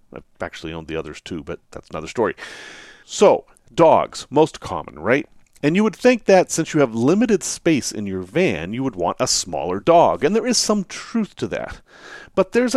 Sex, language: male, English